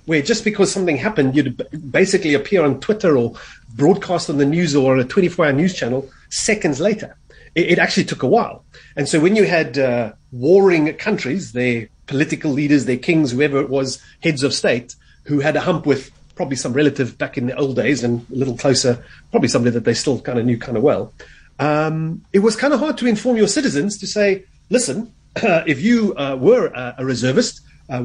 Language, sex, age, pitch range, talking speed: English, male, 30-49, 130-170 Hz, 205 wpm